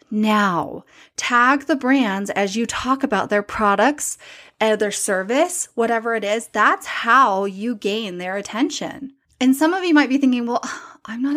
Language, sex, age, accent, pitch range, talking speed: English, female, 30-49, American, 200-265 Hz, 170 wpm